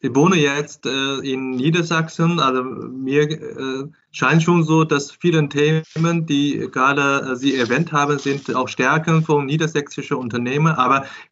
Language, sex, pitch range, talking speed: German, male, 130-160 Hz, 135 wpm